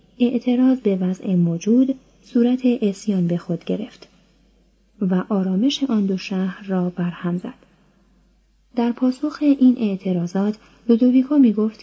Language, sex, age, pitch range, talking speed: Persian, female, 30-49, 185-235 Hz, 120 wpm